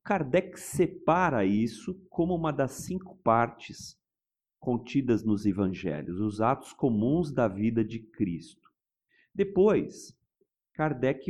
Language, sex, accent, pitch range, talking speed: Portuguese, male, Brazilian, 115-170 Hz, 105 wpm